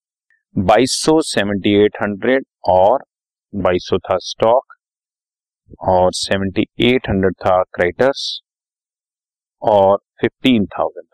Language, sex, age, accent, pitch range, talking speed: Hindi, male, 30-49, native, 95-125 Hz, 60 wpm